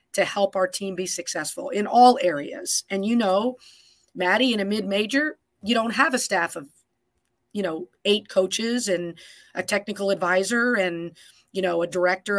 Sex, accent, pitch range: female, American, 180-220 Hz